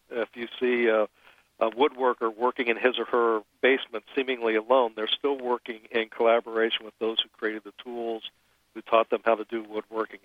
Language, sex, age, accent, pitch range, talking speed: English, male, 50-69, American, 115-135 Hz, 185 wpm